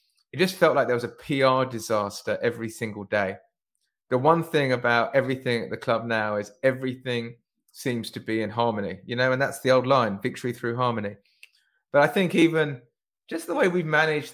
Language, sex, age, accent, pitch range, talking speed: English, male, 30-49, British, 120-140 Hz, 195 wpm